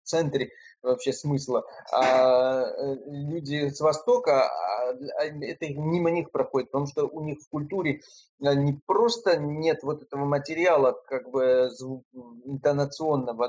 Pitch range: 135-160 Hz